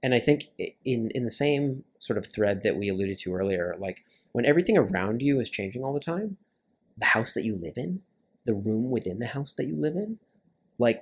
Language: English